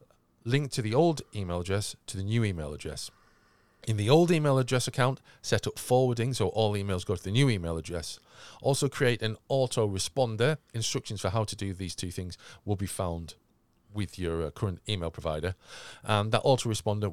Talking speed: 185 wpm